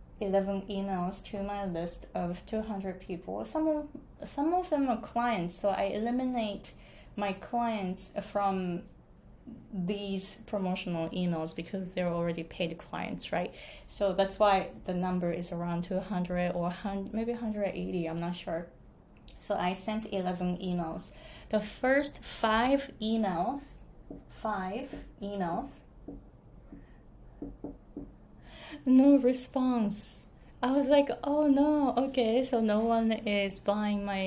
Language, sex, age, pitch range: Japanese, female, 20-39, 180-225 Hz